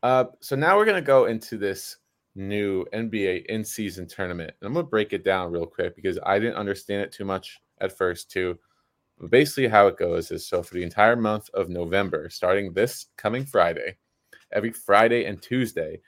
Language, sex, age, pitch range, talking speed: English, male, 20-39, 95-120 Hz, 195 wpm